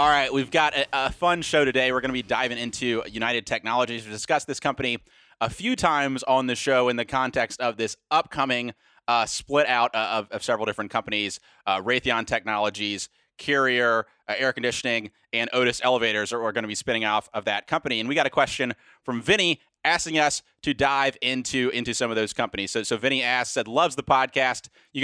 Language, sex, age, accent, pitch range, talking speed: English, male, 30-49, American, 120-145 Hz, 205 wpm